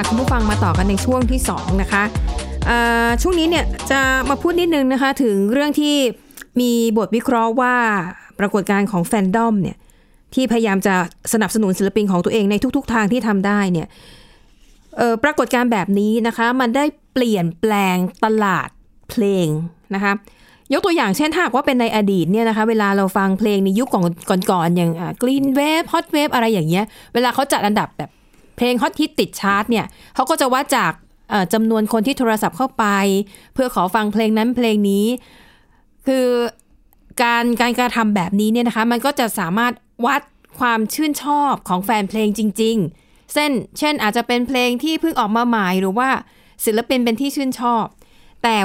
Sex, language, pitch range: female, Thai, 200-250 Hz